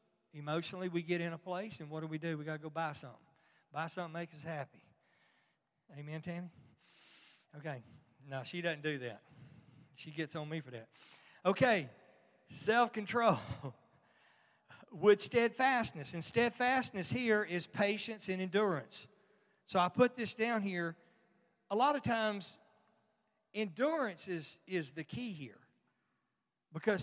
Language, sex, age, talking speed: English, male, 40-59, 145 wpm